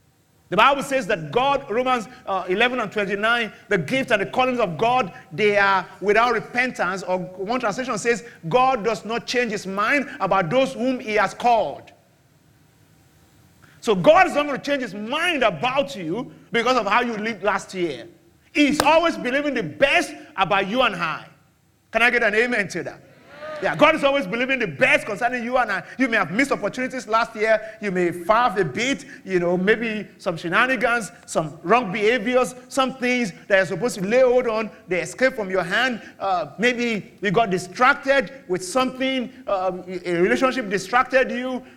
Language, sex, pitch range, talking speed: English, male, 200-260 Hz, 185 wpm